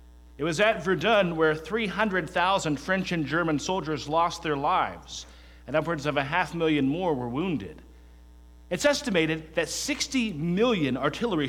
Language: English